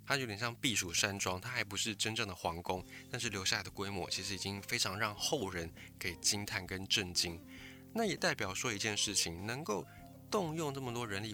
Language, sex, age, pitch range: Chinese, male, 20-39, 95-120 Hz